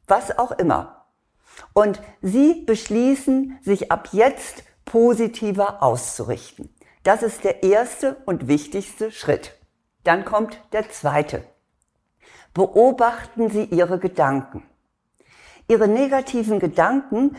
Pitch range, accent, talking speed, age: 180-230 Hz, German, 100 wpm, 50-69